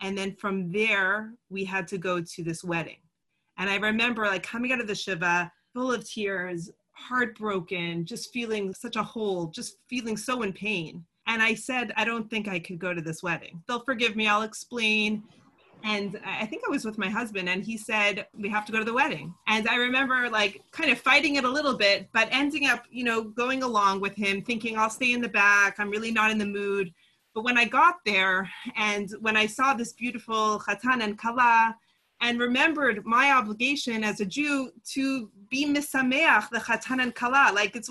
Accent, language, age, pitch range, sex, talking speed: American, English, 30-49, 205-255 Hz, female, 205 wpm